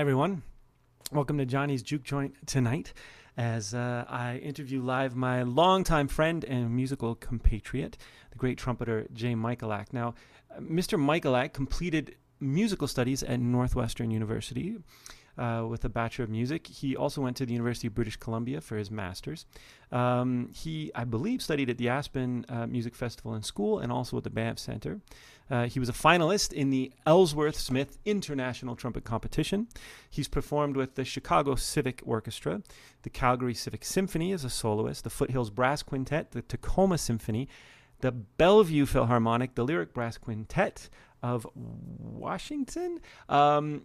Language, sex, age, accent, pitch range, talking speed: English, male, 30-49, American, 115-145 Hz, 155 wpm